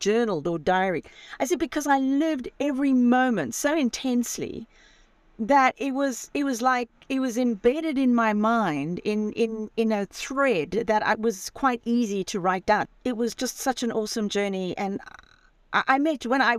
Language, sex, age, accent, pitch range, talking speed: English, female, 40-59, British, 215-295 Hz, 180 wpm